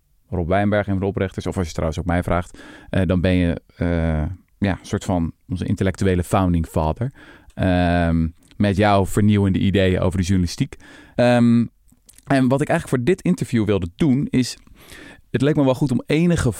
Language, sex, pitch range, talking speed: Dutch, male, 95-120 Hz, 180 wpm